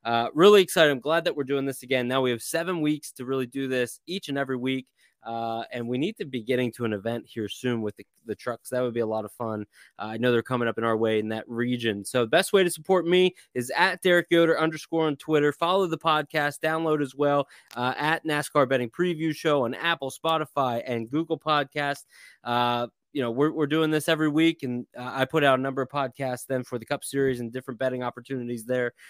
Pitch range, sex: 125-155 Hz, male